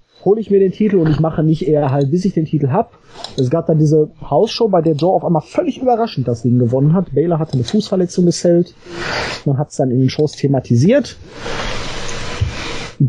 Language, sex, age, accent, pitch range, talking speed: German, male, 30-49, German, 135-180 Hz, 215 wpm